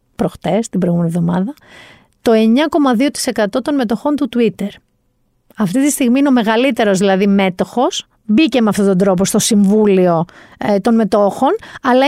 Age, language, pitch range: 40-59, Greek, 210-295 Hz